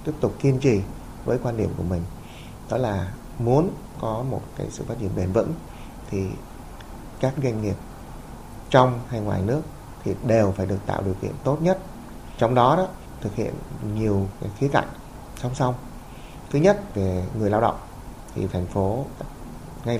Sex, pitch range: male, 100-130 Hz